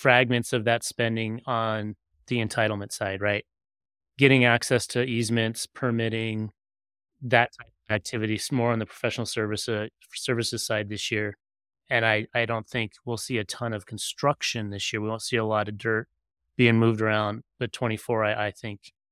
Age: 30-49